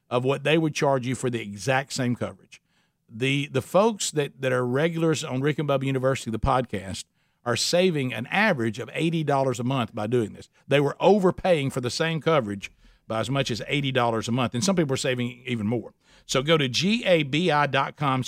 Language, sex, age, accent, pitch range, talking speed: English, male, 50-69, American, 130-165 Hz, 200 wpm